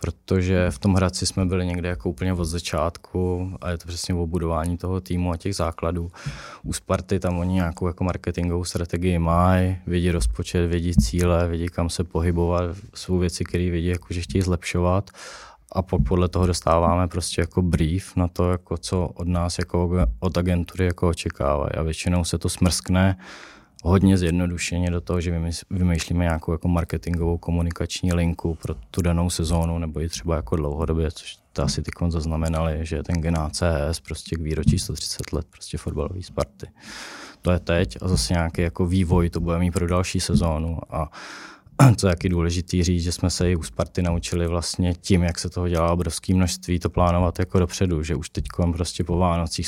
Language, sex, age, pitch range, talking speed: Czech, male, 20-39, 80-90 Hz, 185 wpm